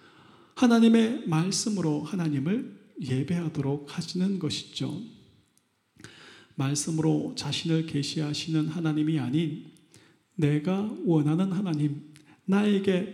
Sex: male